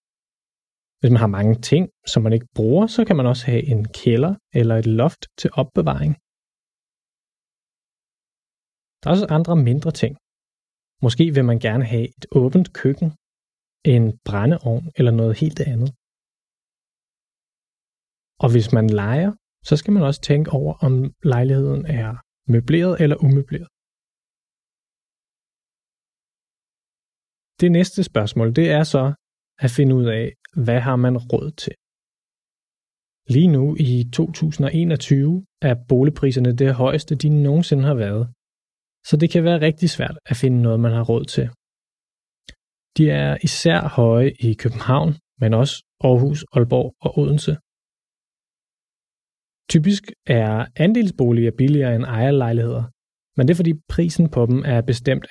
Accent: native